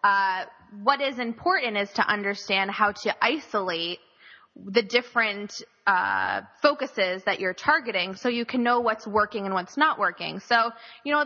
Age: 20-39